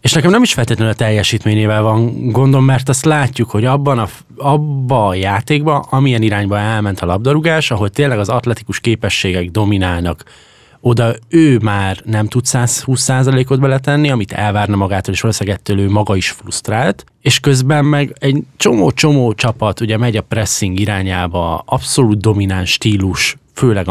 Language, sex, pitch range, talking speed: English, male, 100-125 Hz, 150 wpm